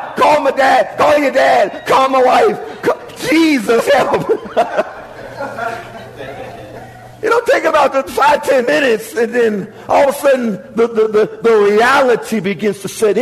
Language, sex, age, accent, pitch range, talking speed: English, male, 50-69, American, 215-270 Hz, 155 wpm